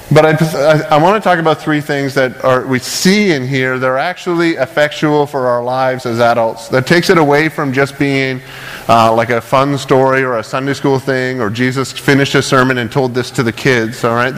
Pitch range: 125-150 Hz